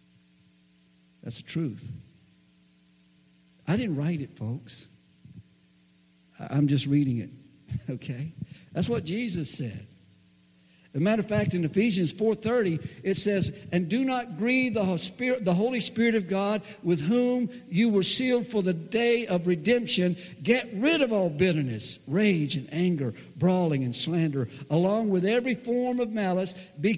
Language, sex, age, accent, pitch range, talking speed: English, male, 60-79, American, 120-190 Hz, 140 wpm